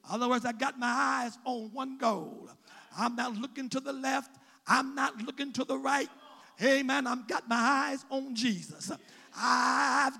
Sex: male